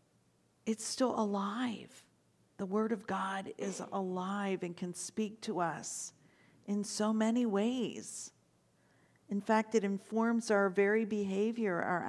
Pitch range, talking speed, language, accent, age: 185-225 Hz, 130 wpm, English, American, 50-69